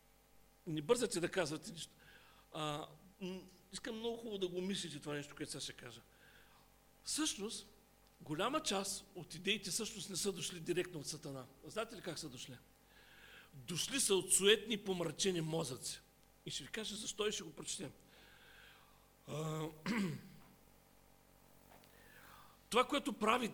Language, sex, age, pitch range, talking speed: English, male, 40-59, 155-205 Hz, 140 wpm